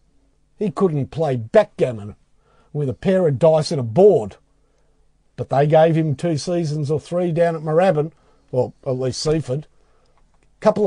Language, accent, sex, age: English, Australian, male, 50-69